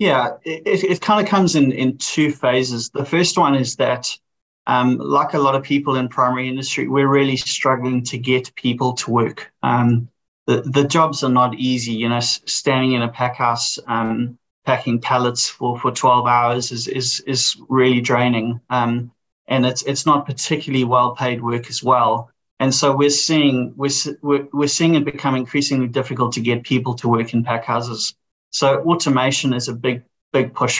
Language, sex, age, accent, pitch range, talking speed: English, male, 30-49, Australian, 120-140 Hz, 185 wpm